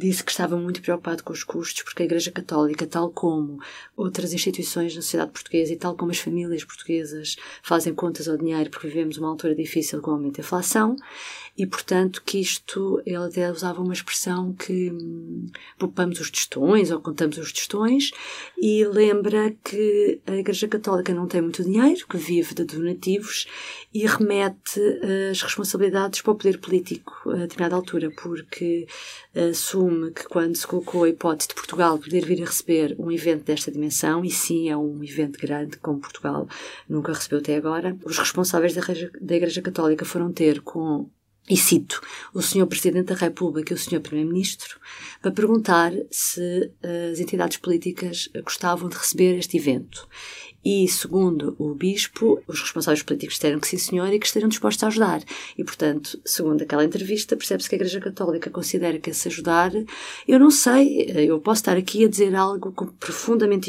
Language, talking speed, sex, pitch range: Portuguese, 175 wpm, female, 165-195 Hz